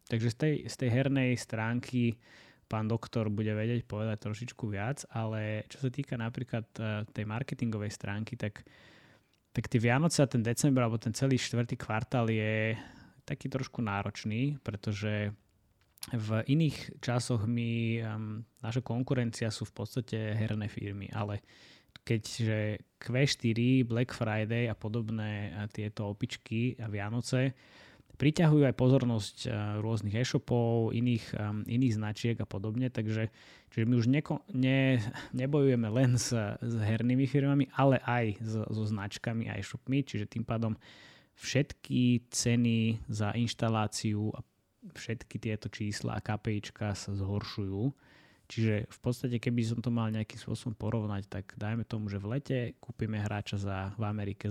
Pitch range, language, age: 105-125 Hz, Slovak, 20-39